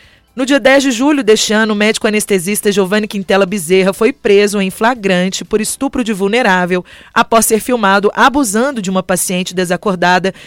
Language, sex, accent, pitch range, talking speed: Portuguese, female, Brazilian, 195-235 Hz, 165 wpm